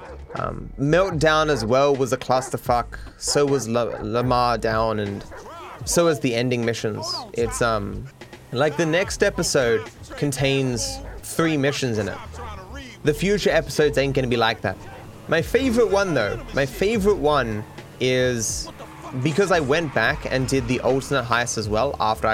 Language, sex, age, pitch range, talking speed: English, male, 20-39, 115-155 Hz, 155 wpm